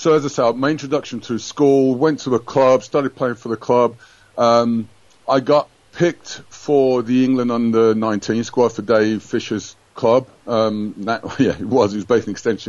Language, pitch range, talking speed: English, 105-130 Hz, 190 wpm